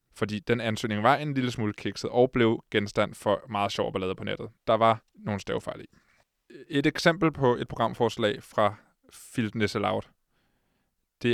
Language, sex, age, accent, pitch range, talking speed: Danish, male, 20-39, native, 110-130 Hz, 165 wpm